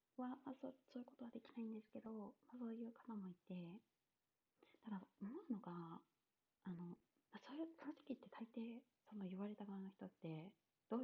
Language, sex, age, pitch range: Japanese, female, 30-49, 180-255 Hz